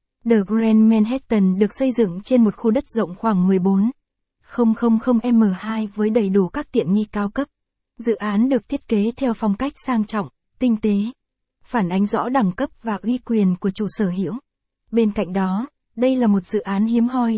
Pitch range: 200-235 Hz